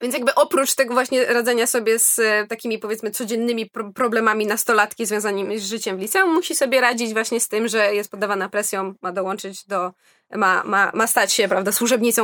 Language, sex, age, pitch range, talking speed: Polish, female, 20-39, 210-260 Hz, 185 wpm